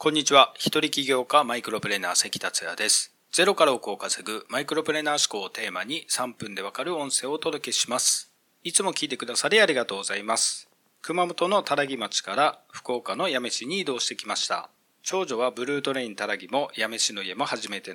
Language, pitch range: Japanese, 125-170 Hz